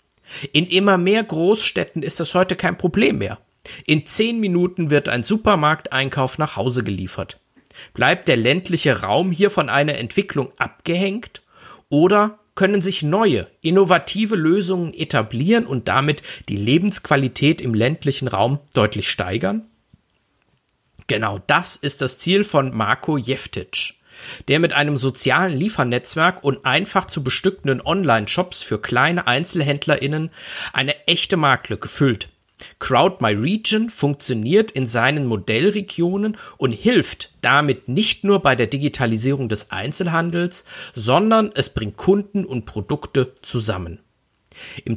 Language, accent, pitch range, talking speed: German, German, 125-180 Hz, 125 wpm